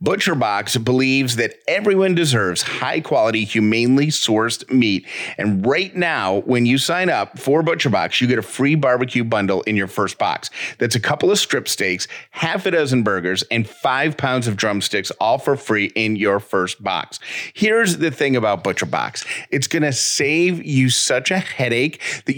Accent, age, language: American, 40-59, English